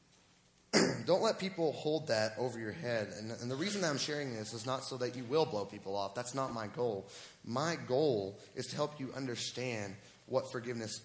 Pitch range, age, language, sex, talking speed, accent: 100-125 Hz, 30-49, English, male, 205 wpm, American